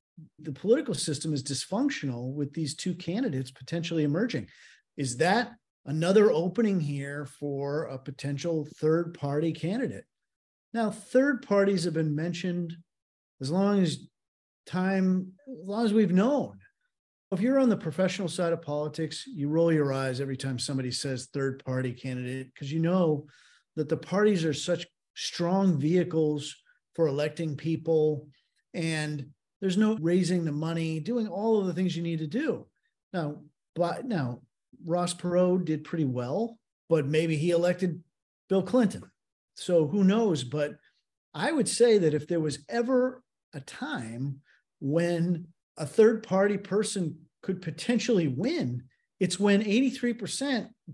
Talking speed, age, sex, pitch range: 145 wpm, 50-69, male, 150-200 Hz